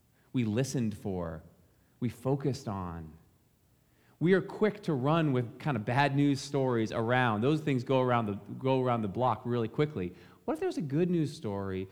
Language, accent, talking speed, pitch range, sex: English, American, 180 wpm, 110-155 Hz, male